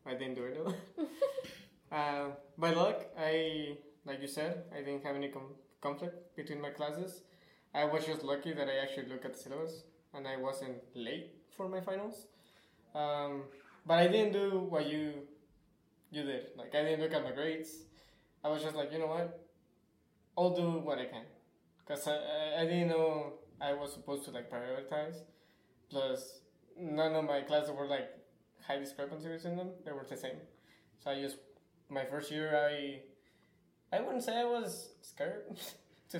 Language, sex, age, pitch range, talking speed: English, male, 20-39, 140-170 Hz, 175 wpm